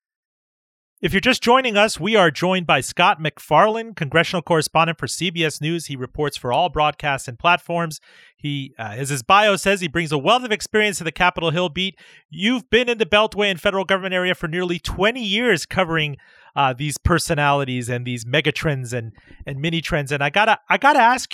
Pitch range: 145-195 Hz